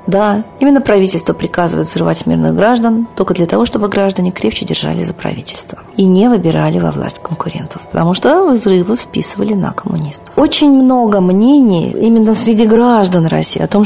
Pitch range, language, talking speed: 165-220 Hz, Russian, 160 wpm